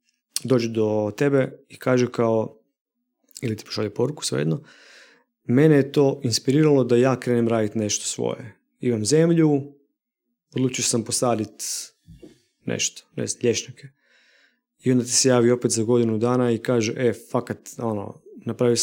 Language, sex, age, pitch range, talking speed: Croatian, male, 30-49, 115-145 Hz, 140 wpm